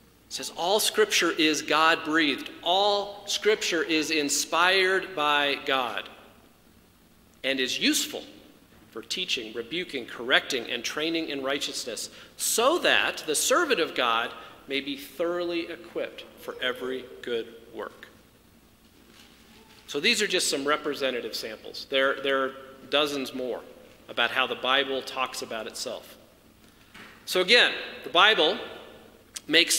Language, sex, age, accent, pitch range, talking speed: English, male, 40-59, American, 145-215 Hz, 125 wpm